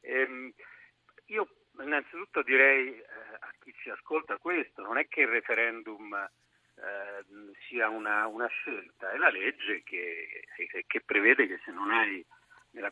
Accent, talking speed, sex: native, 145 wpm, male